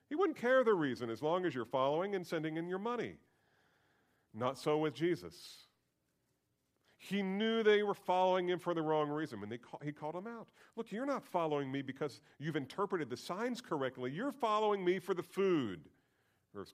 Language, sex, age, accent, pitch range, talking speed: English, male, 40-59, American, 125-180 Hz, 190 wpm